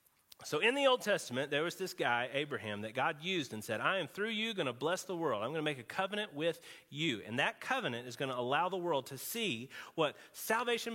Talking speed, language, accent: 245 wpm, English, American